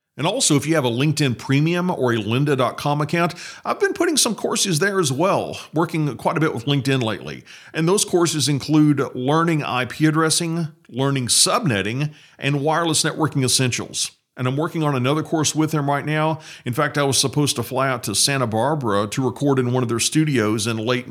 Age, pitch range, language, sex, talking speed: 40-59, 125-160 Hz, English, male, 200 wpm